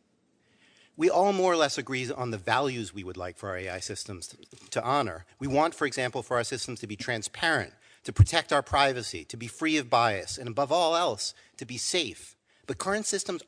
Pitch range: 110-150 Hz